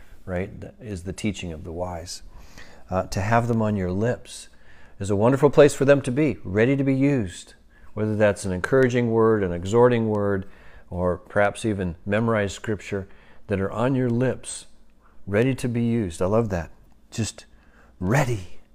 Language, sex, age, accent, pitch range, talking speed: English, male, 40-59, American, 85-110 Hz, 170 wpm